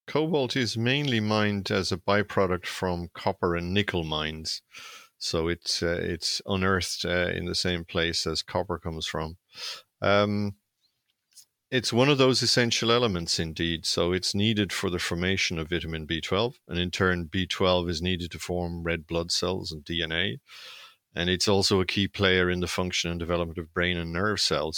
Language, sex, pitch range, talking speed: English, male, 85-100 Hz, 175 wpm